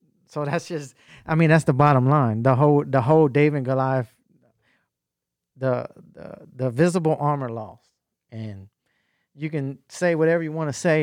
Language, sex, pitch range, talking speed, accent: English, male, 130-160 Hz, 160 wpm, American